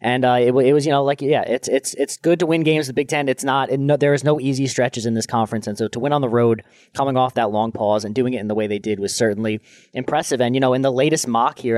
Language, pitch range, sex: English, 120-140 Hz, male